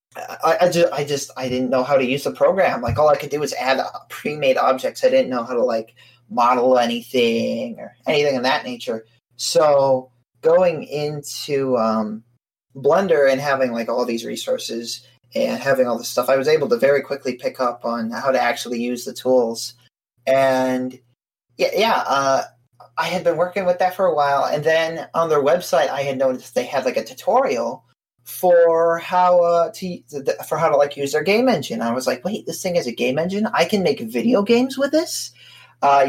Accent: American